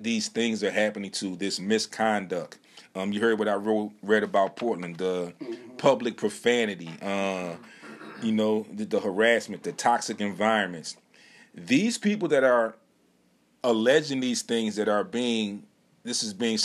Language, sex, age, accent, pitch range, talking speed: English, male, 30-49, American, 105-130 Hz, 150 wpm